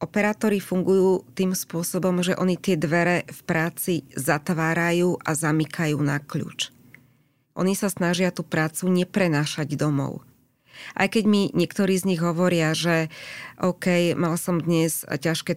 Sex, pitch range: female, 155-180 Hz